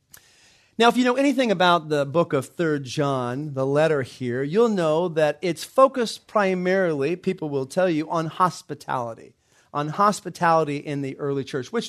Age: 40-59